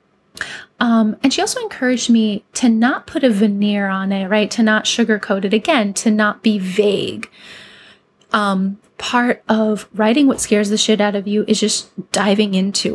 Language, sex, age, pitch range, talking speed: English, female, 20-39, 195-230 Hz, 175 wpm